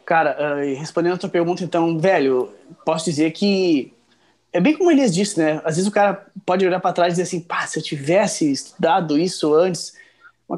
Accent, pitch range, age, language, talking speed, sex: Brazilian, 160-205 Hz, 20-39, Portuguese, 205 wpm, male